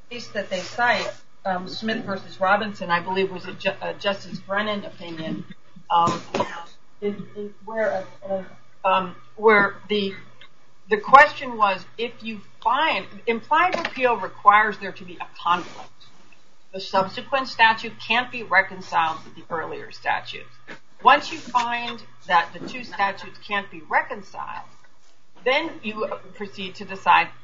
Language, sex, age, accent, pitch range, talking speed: English, female, 40-59, American, 180-220 Hz, 140 wpm